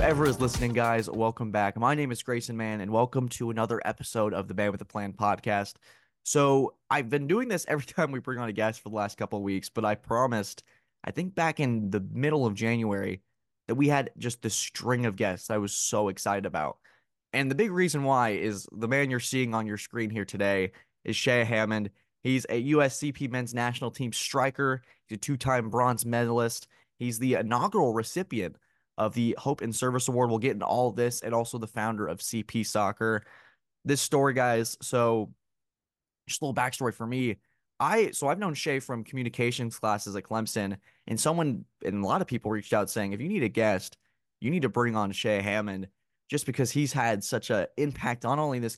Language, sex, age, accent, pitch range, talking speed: English, male, 20-39, American, 105-130 Hz, 210 wpm